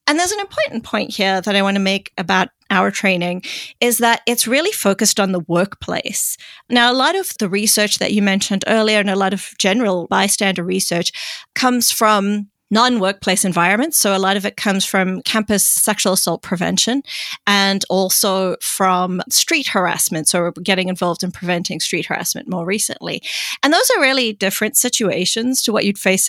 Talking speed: 185 wpm